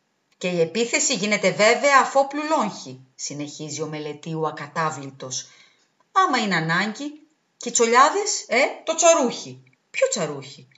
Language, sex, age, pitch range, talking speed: Greek, female, 40-59, 160-260 Hz, 120 wpm